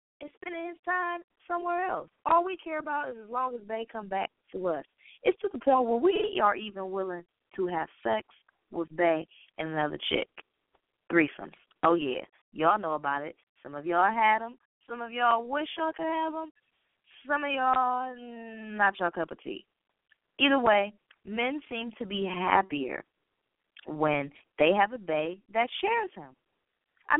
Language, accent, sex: English, American, female